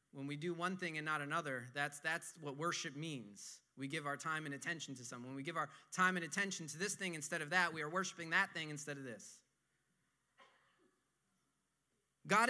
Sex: male